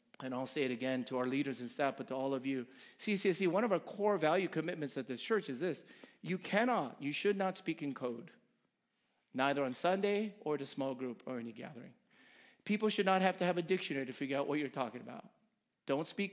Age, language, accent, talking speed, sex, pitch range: 40-59, English, American, 240 wpm, male, 140-205 Hz